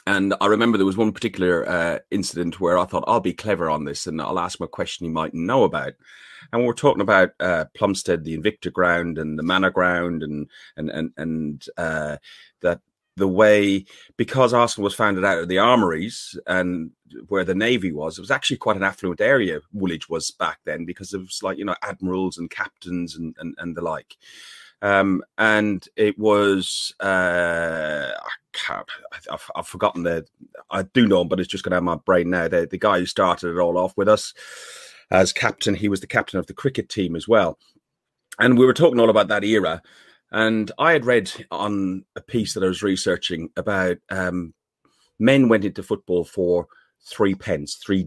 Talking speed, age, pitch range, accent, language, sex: 200 wpm, 30-49, 85-105 Hz, British, English, male